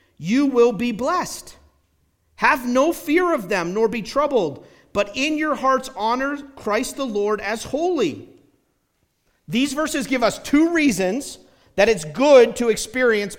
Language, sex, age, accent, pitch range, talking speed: English, male, 50-69, American, 180-265 Hz, 150 wpm